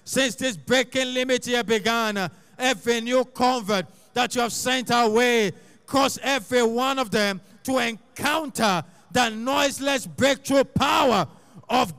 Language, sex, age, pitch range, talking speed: English, male, 50-69, 220-260 Hz, 130 wpm